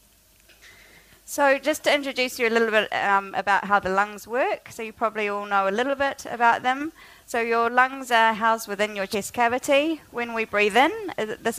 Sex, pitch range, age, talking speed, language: female, 205-265 Hz, 30-49, 195 wpm, English